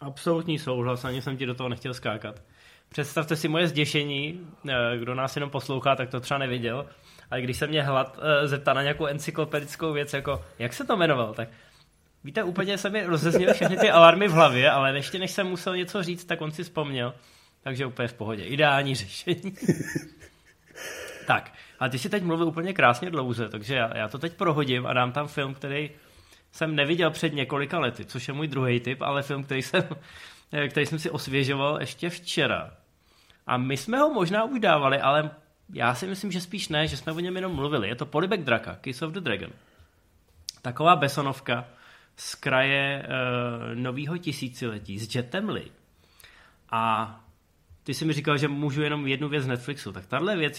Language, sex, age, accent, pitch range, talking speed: Czech, male, 20-39, native, 125-160 Hz, 185 wpm